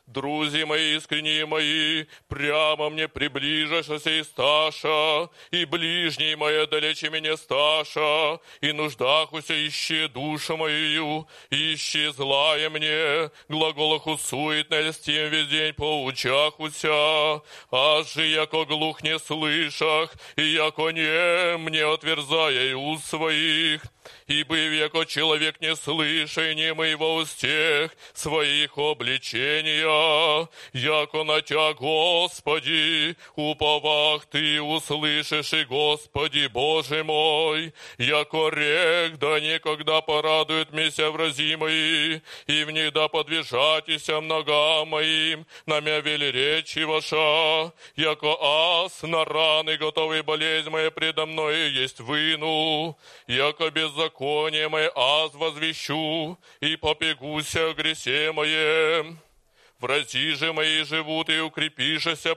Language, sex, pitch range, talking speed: Polish, male, 150-160 Hz, 100 wpm